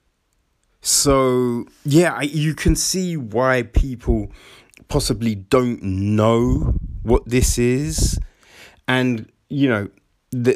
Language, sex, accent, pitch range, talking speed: English, male, British, 105-145 Hz, 100 wpm